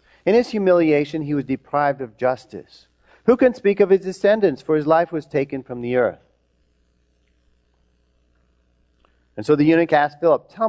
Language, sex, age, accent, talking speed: English, male, 40-59, American, 165 wpm